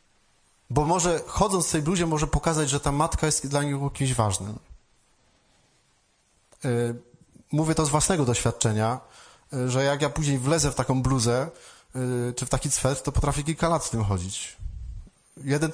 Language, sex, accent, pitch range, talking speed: Polish, male, native, 125-165 Hz, 155 wpm